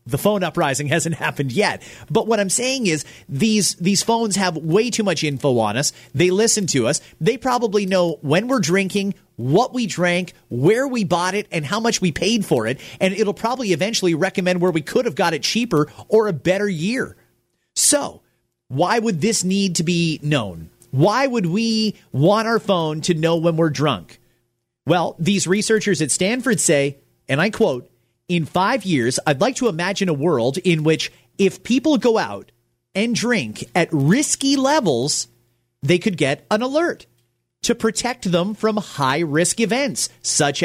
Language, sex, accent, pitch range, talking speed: English, male, American, 155-225 Hz, 180 wpm